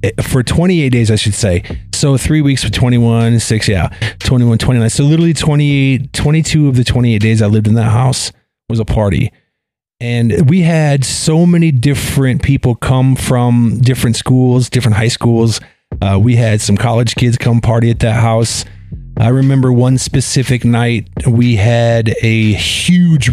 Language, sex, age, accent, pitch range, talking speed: English, male, 40-59, American, 110-130 Hz, 165 wpm